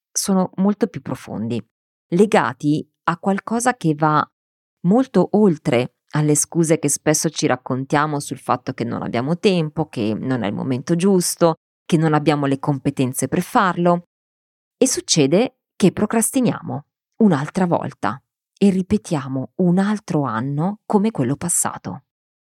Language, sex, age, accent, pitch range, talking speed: Italian, female, 30-49, native, 145-195 Hz, 135 wpm